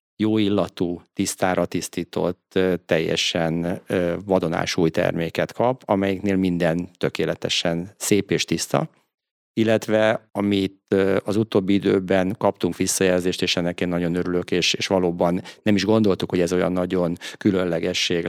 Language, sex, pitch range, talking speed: Hungarian, male, 85-100 Hz, 120 wpm